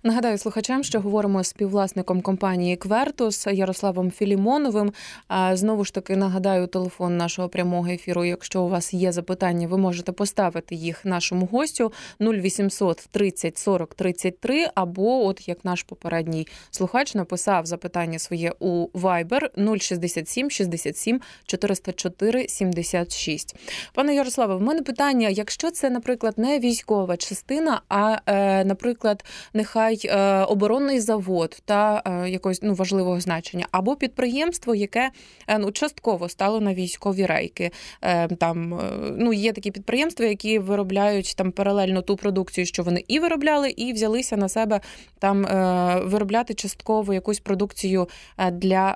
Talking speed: 125 wpm